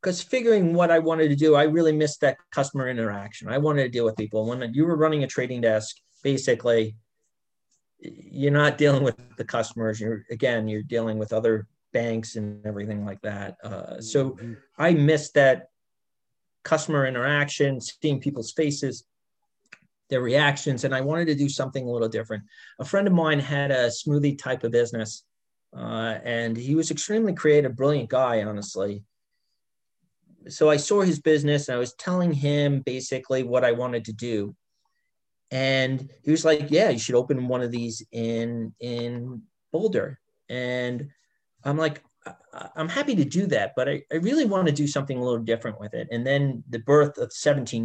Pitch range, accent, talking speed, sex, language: 115-150 Hz, American, 175 wpm, male, English